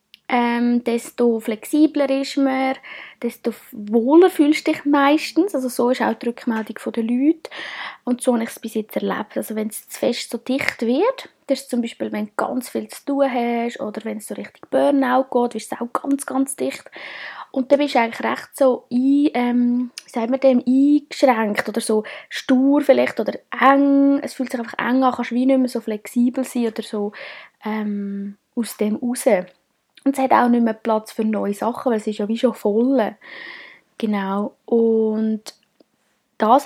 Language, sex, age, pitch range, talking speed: German, female, 20-39, 220-275 Hz, 190 wpm